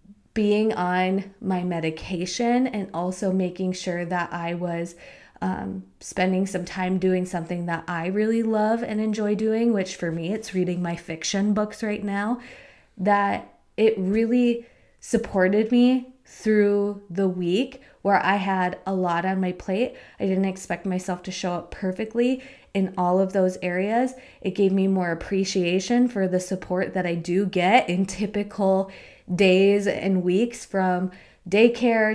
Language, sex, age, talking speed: English, female, 20-39, 155 wpm